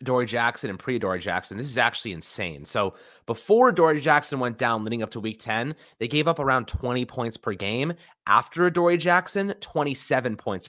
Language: English